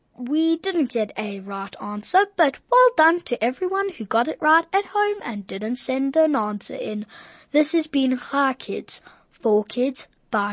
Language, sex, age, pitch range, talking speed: English, female, 20-39, 225-320 Hz, 175 wpm